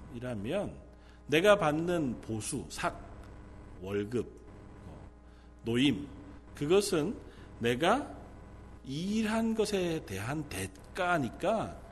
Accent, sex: native, male